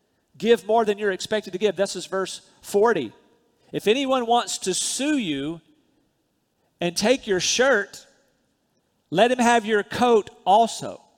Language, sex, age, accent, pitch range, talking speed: English, male, 40-59, American, 170-210 Hz, 145 wpm